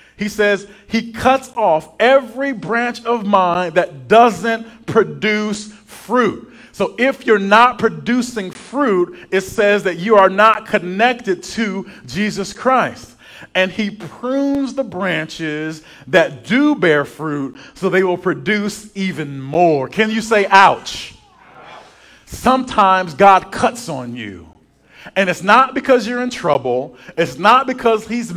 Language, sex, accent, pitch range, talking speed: English, male, American, 170-230 Hz, 135 wpm